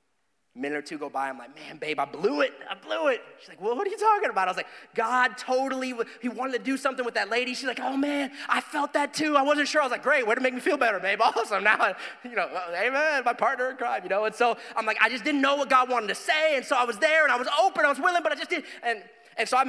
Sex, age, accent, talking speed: male, 30-49, American, 310 wpm